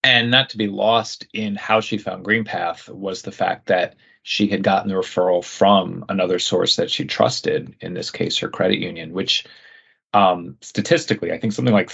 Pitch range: 100-125 Hz